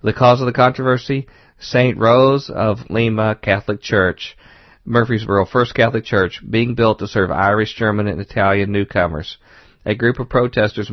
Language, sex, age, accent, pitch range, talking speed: English, male, 50-69, American, 100-120 Hz, 155 wpm